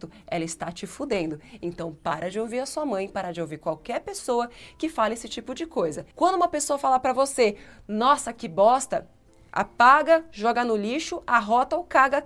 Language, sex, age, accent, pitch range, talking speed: Portuguese, female, 20-39, Brazilian, 200-285 Hz, 185 wpm